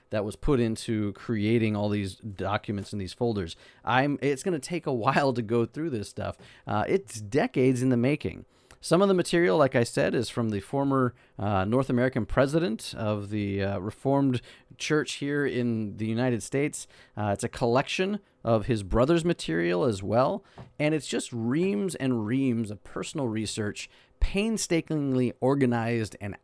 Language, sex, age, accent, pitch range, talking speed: English, male, 30-49, American, 110-145 Hz, 170 wpm